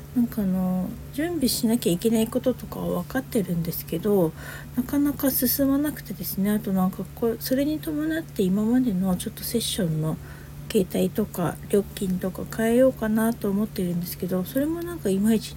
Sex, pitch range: female, 180-245 Hz